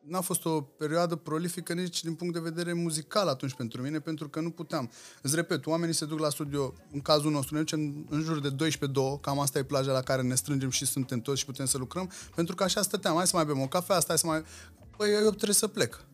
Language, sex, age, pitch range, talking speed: Romanian, male, 20-39, 145-195 Hz, 255 wpm